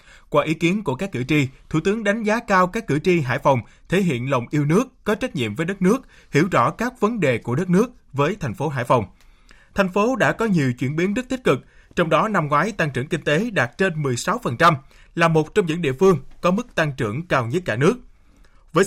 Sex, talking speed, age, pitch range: male, 245 wpm, 20-39, 135-200 Hz